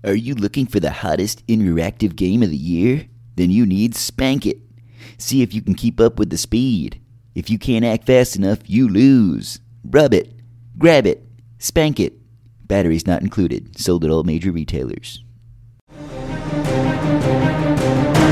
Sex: male